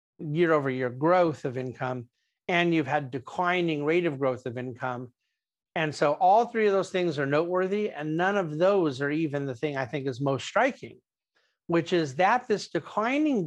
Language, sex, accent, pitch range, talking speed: English, male, American, 150-190 Hz, 185 wpm